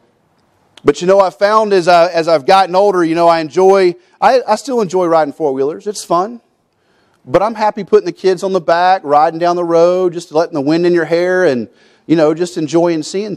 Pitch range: 165-205 Hz